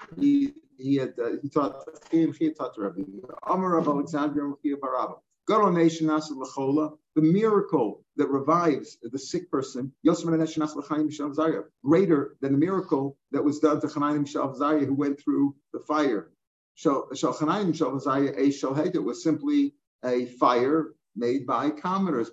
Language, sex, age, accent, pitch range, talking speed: English, male, 50-69, American, 135-165 Hz, 80 wpm